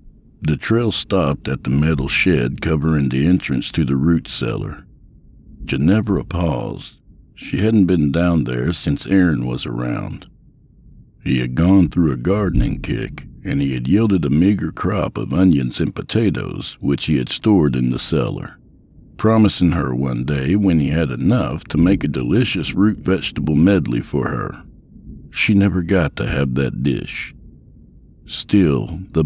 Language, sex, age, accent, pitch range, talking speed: English, male, 60-79, American, 70-95 Hz, 155 wpm